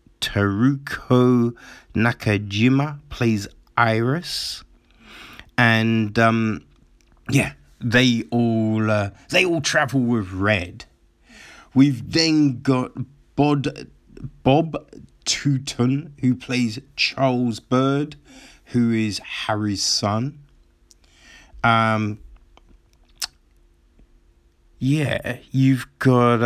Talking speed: 75 wpm